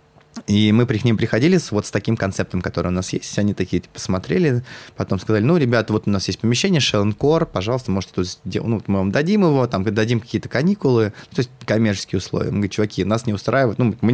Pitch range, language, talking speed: 90-115 Hz, Russian, 220 wpm